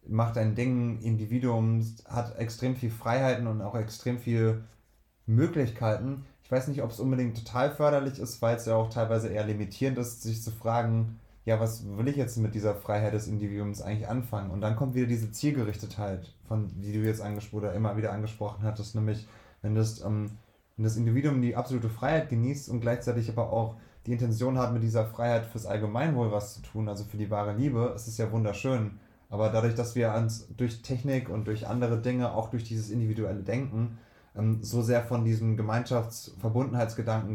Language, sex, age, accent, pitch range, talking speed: German, male, 20-39, German, 110-120 Hz, 190 wpm